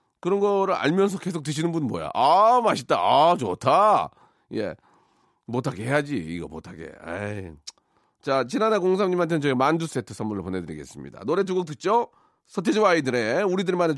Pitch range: 120-180 Hz